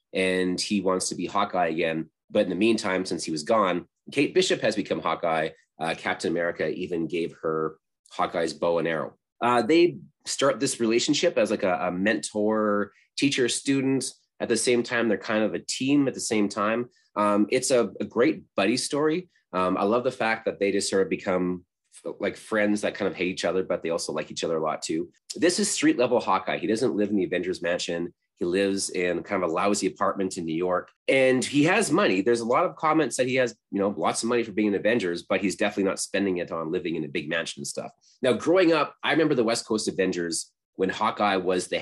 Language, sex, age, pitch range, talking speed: English, male, 30-49, 95-145 Hz, 230 wpm